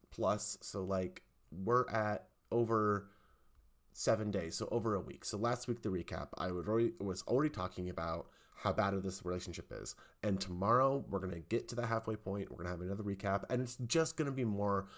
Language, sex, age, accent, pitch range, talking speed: English, male, 30-49, American, 90-120 Hz, 200 wpm